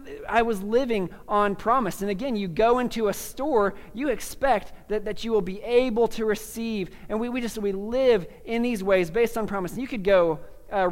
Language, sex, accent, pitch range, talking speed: English, male, American, 175-230 Hz, 215 wpm